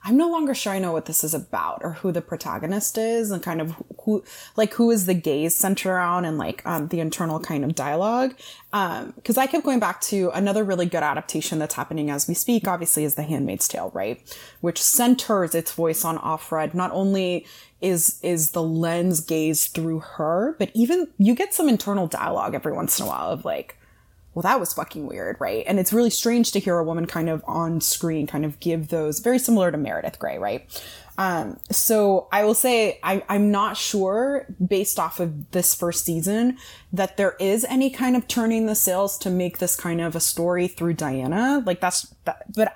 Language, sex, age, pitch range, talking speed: English, female, 20-39, 165-220 Hz, 210 wpm